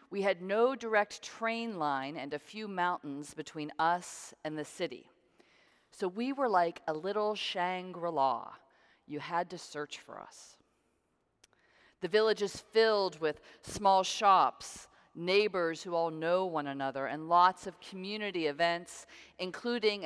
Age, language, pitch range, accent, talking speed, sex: 40-59, English, 155-195 Hz, American, 140 wpm, female